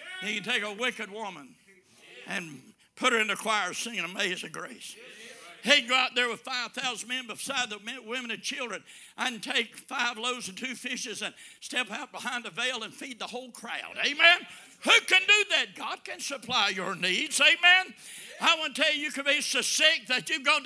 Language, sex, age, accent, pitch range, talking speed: English, male, 60-79, American, 235-315 Hz, 205 wpm